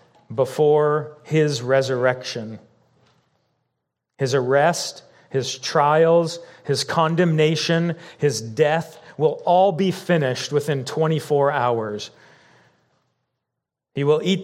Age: 40-59